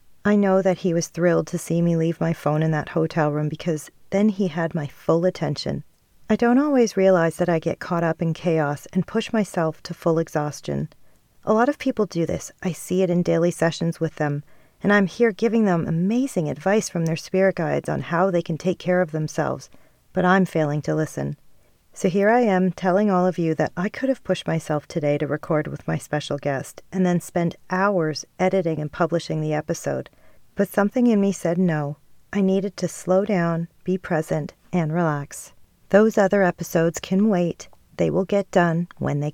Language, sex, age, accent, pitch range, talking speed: English, female, 40-59, American, 160-195 Hz, 205 wpm